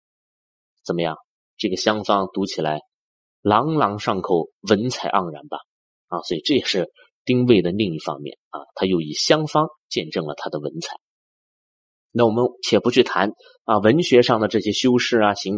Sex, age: male, 30-49